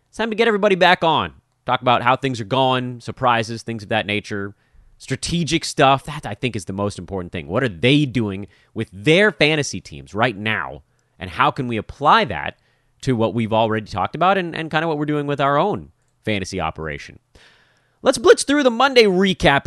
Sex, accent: male, American